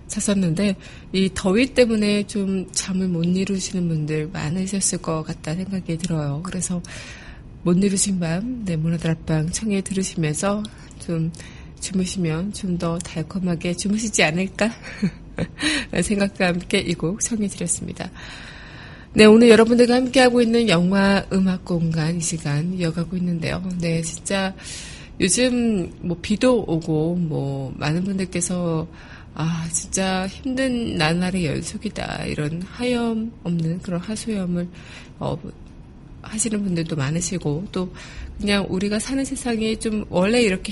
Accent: native